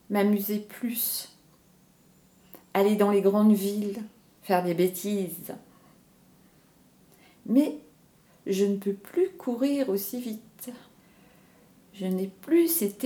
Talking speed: 100 wpm